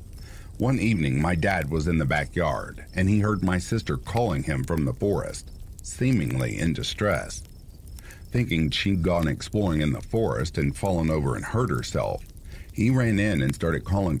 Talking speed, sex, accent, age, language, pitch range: 170 wpm, male, American, 50-69, English, 75-100 Hz